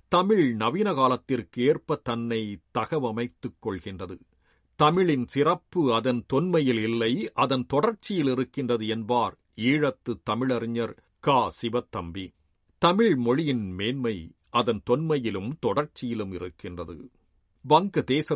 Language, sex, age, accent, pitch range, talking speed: Tamil, male, 50-69, native, 100-135 Hz, 85 wpm